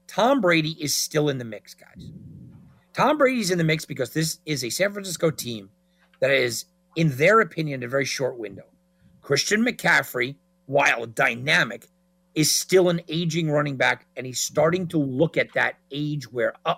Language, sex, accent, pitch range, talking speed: English, male, American, 140-180 Hz, 175 wpm